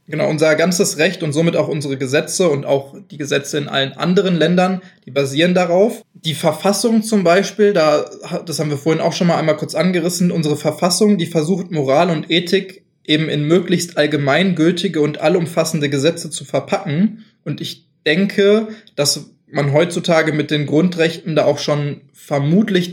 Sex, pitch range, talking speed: male, 145-175 Hz, 165 wpm